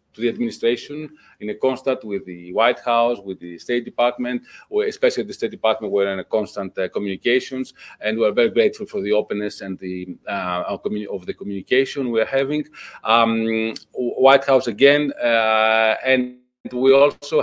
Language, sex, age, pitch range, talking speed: English, male, 40-59, 110-140 Hz, 170 wpm